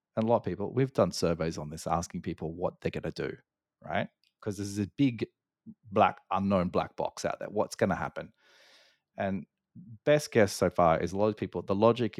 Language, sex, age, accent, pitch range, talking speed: English, male, 30-49, Australian, 95-120 Hz, 220 wpm